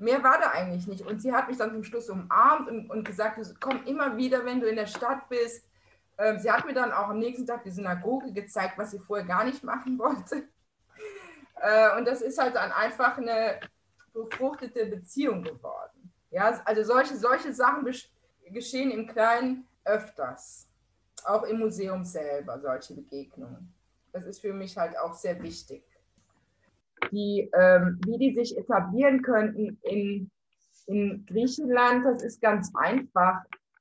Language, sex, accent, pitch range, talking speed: German, female, German, 195-250 Hz, 155 wpm